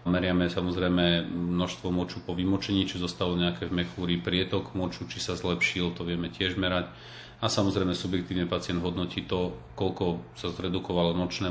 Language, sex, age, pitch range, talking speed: Slovak, male, 40-59, 90-100 Hz, 155 wpm